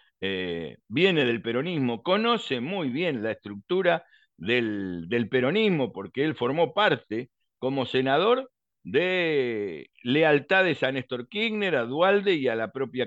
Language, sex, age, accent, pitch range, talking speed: Spanish, male, 50-69, Argentinian, 120-170 Hz, 135 wpm